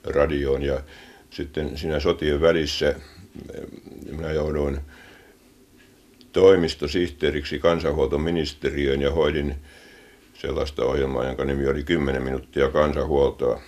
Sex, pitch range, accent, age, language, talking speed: male, 75-95 Hz, native, 50-69, Finnish, 85 wpm